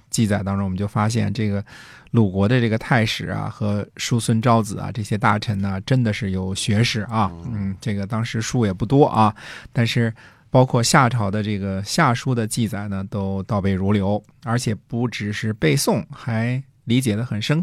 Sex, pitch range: male, 100-120 Hz